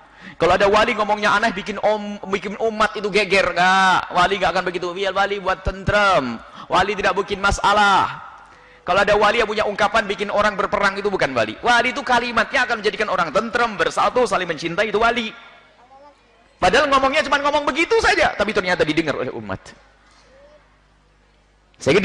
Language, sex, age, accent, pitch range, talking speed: Indonesian, male, 30-49, native, 150-225 Hz, 165 wpm